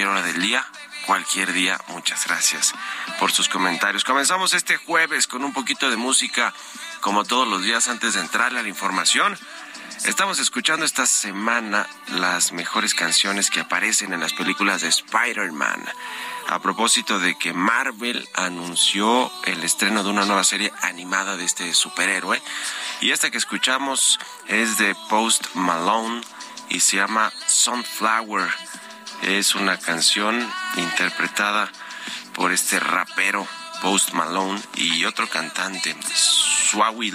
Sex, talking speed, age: male, 135 wpm, 30-49